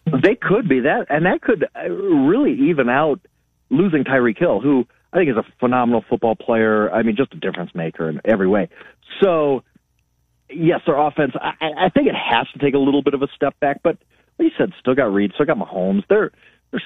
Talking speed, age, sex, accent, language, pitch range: 215 wpm, 40-59, male, American, English, 125-180 Hz